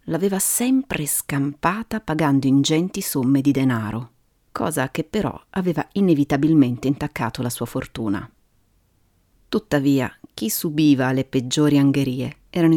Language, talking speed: Italian, 115 wpm